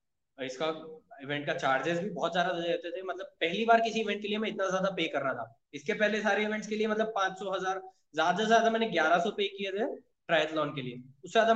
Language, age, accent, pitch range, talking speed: Hindi, 20-39, native, 155-215 Hz, 105 wpm